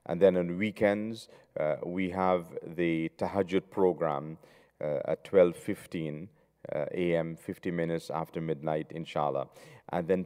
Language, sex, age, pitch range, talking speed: English, male, 40-59, 80-95 Hz, 130 wpm